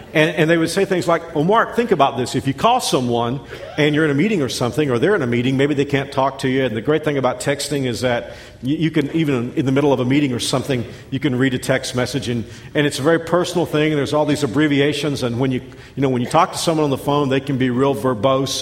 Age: 50-69